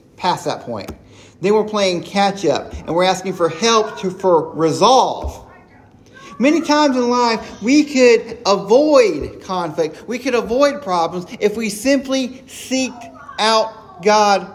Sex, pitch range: male, 170-225 Hz